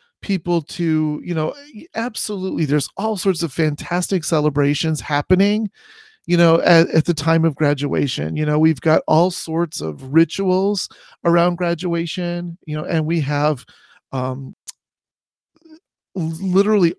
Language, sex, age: English, male, 40-59